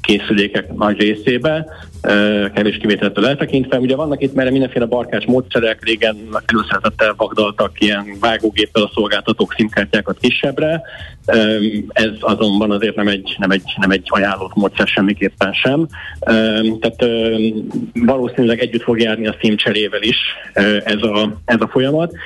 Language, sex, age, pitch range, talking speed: Hungarian, male, 30-49, 105-120 Hz, 130 wpm